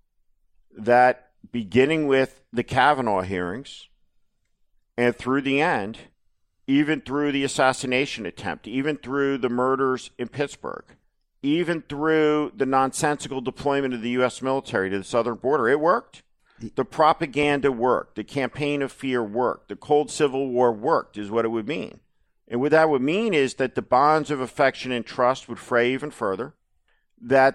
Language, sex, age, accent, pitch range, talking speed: English, male, 50-69, American, 115-145 Hz, 155 wpm